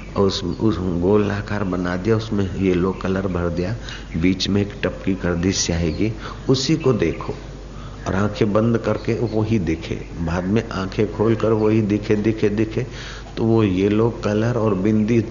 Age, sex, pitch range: 50-69, male, 95-110 Hz